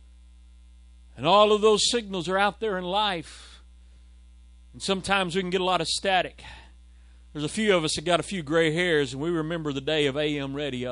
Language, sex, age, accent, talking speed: English, male, 40-59, American, 210 wpm